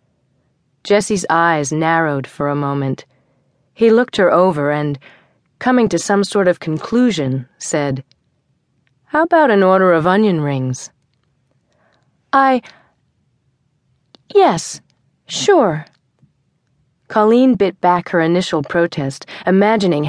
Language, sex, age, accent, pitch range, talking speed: English, female, 40-59, American, 140-190 Hz, 105 wpm